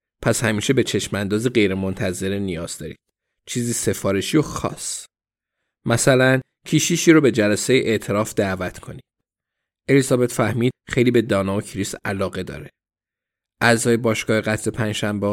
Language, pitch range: Persian, 100-130 Hz